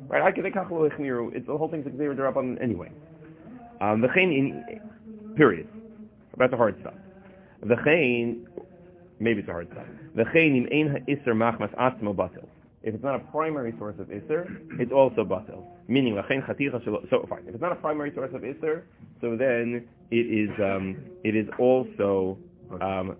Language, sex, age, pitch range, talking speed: English, male, 30-49, 115-160 Hz, 160 wpm